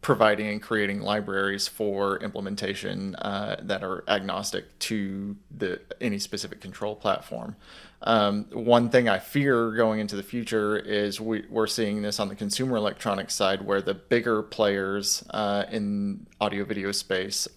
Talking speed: 150 wpm